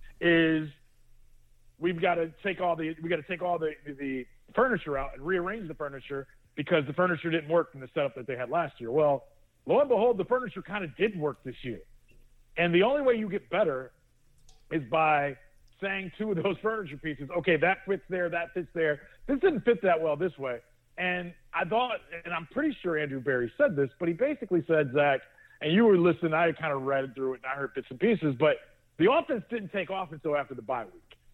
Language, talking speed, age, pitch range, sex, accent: English, 225 wpm, 40-59, 150-200 Hz, male, American